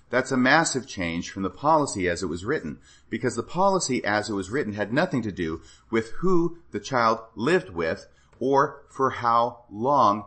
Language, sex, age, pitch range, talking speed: English, male, 40-59, 100-130 Hz, 185 wpm